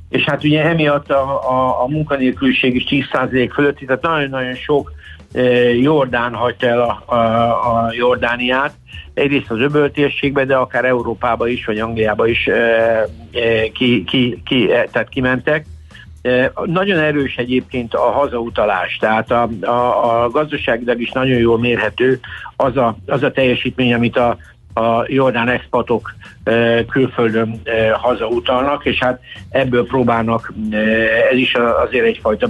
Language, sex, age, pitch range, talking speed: Hungarian, male, 60-79, 115-140 Hz, 140 wpm